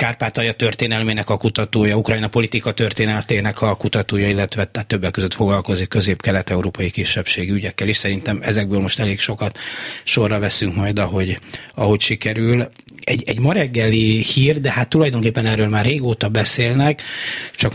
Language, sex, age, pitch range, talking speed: Hungarian, male, 30-49, 100-115 Hz, 140 wpm